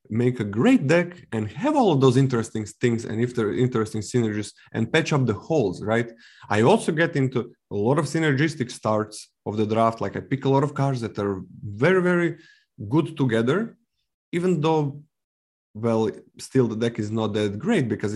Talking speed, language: 190 wpm, English